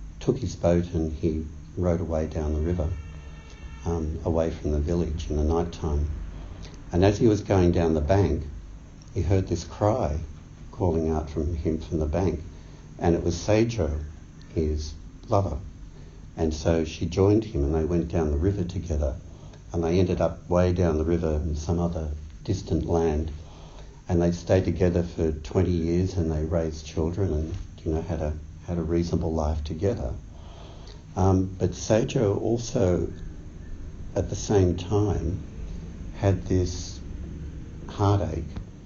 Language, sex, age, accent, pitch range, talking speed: English, male, 60-79, Australian, 80-90 Hz, 155 wpm